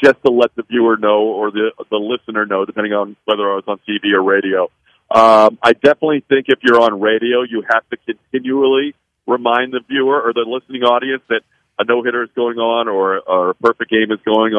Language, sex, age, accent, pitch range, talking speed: English, male, 50-69, American, 110-125 Hz, 220 wpm